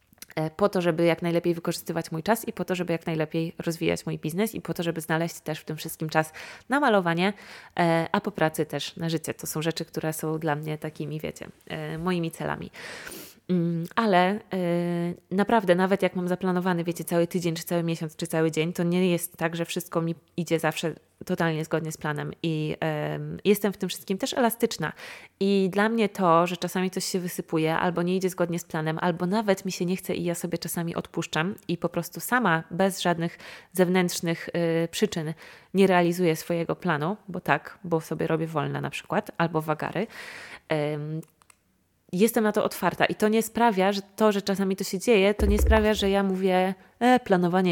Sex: female